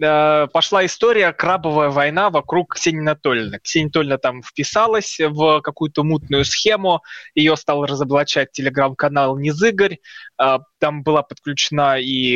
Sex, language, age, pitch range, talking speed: male, Russian, 20-39, 140-175 Hz, 115 wpm